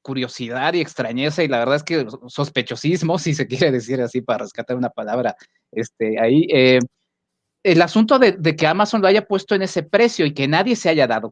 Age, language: 30-49, Spanish